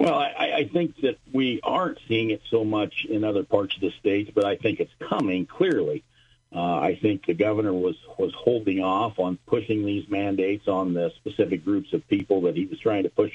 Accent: American